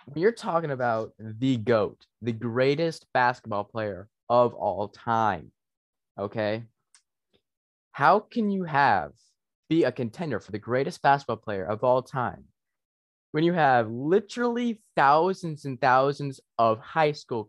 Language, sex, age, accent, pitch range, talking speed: English, male, 20-39, American, 105-135 Hz, 130 wpm